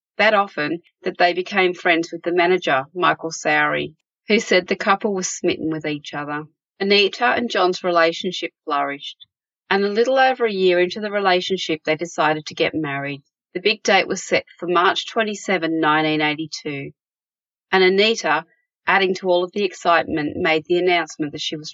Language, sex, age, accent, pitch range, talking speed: English, female, 30-49, Australian, 160-200 Hz, 170 wpm